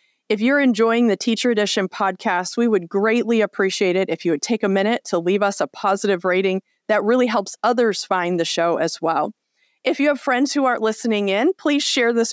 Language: English